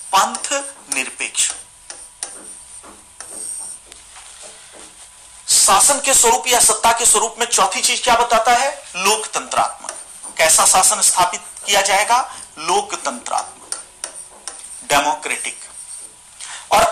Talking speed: 85 wpm